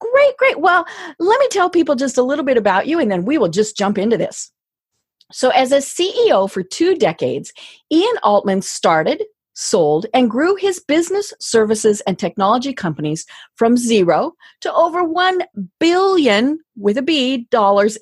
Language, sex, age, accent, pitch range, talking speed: English, female, 40-59, American, 200-330 Hz, 165 wpm